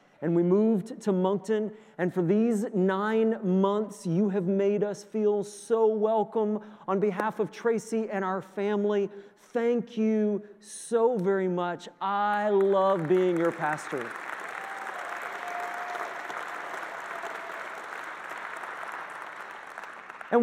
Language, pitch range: English, 180-220 Hz